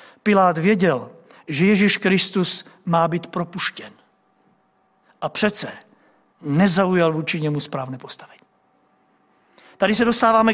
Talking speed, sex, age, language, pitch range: 100 wpm, male, 50-69, Czech, 190-250 Hz